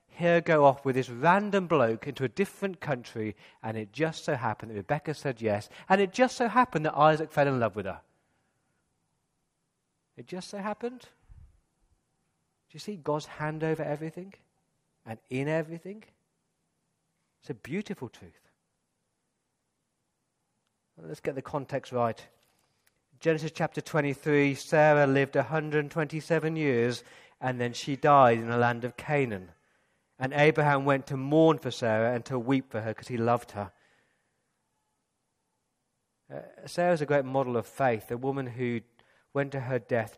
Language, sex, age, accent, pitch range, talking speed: English, male, 40-59, British, 120-155 Hz, 150 wpm